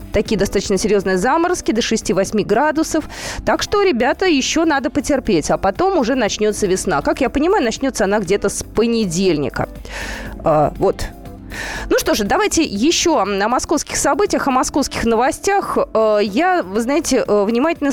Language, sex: Russian, female